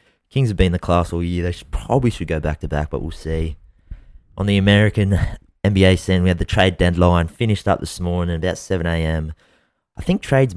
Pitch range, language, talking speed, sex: 85-95 Hz, English, 215 wpm, male